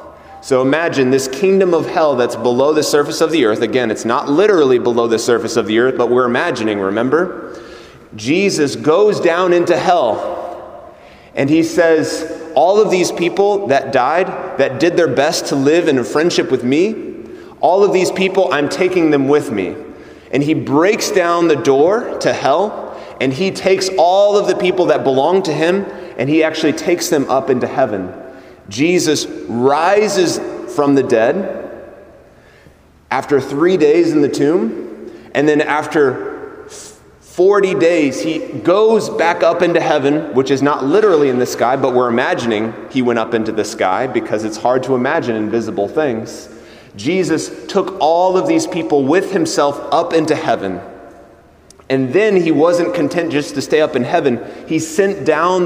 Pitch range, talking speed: 130-190 Hz, 170 wpm